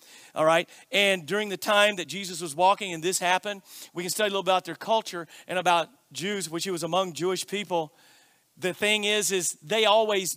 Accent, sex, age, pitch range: American, male, 40-59, 175-255 Hz